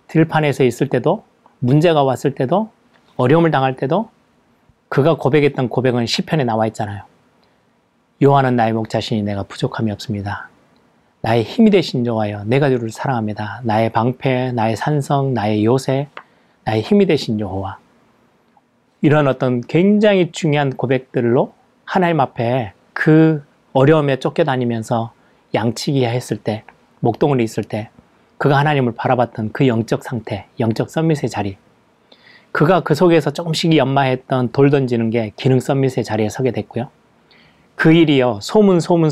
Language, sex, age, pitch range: Korean, male, 30-49, 115-155 Hz